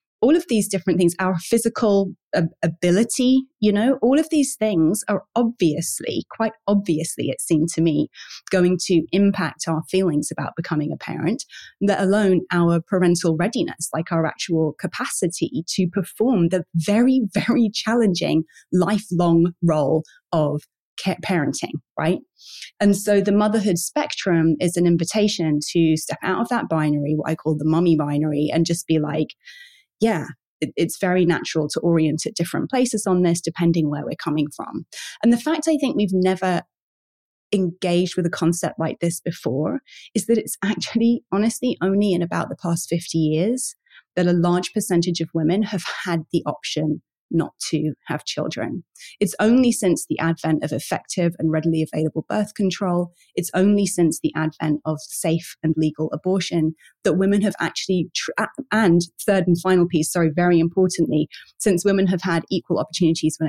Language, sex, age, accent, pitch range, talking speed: English, female, 30-49, British, 160-205 Hz, 165 wpm